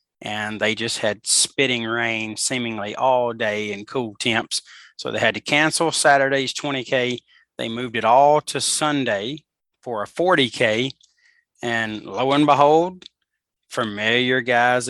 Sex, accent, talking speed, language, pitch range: male, American, 135 wpm, English, 110-130 Hz